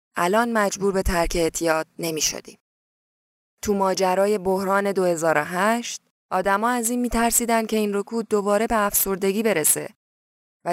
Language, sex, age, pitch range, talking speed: Persian, female, 10-29, 170-235 Hz, 125 wpm